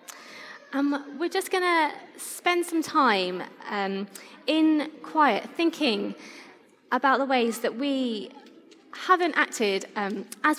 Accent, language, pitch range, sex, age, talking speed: British, English, 215-290 Hz, female, 20-39, 120 wpm